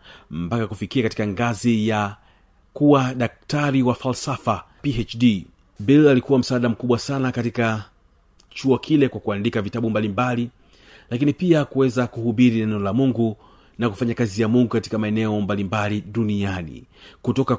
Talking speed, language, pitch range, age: 140 wpm, Swahili, 105-130 Hz, 40-59